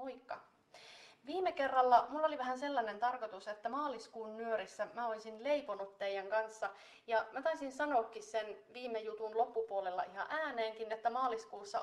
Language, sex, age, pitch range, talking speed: Finnish, female, 30-49, 210-240 Hz, 140 wpm